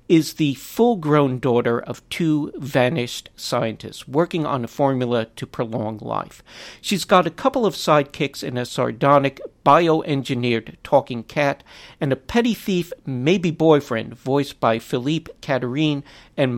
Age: 50-69